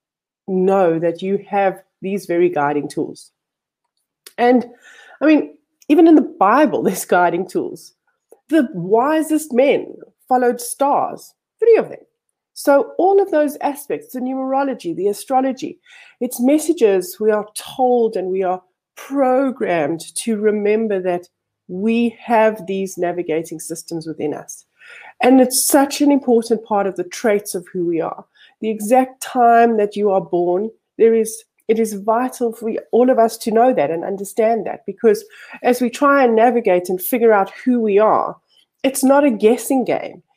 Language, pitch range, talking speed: English, 195-265 Hz, 155 wpm